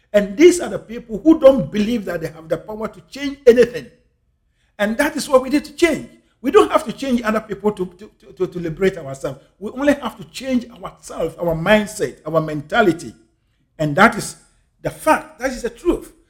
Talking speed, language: 205 wpm, English